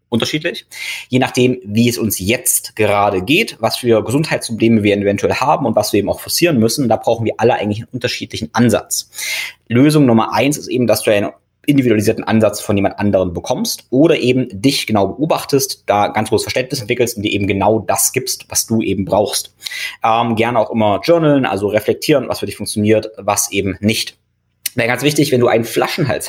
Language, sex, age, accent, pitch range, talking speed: German, male, 20-39, German, 105-125 Hz, 195 wpm